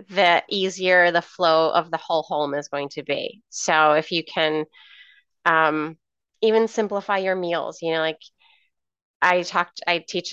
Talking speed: 165 wpm